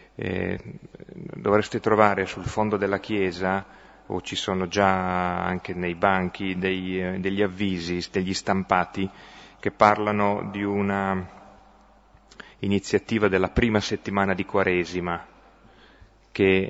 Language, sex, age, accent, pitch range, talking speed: Italian, male, 30-49, native, 90-100 Hz, 100 wpm